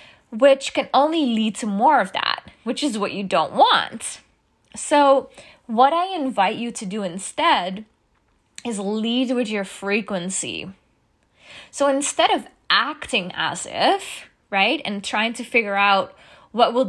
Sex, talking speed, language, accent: female, 145 wpm, English, American